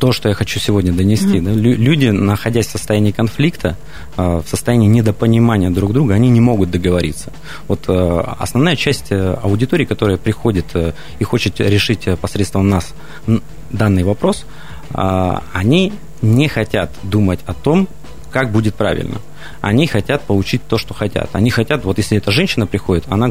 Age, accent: 30-49, native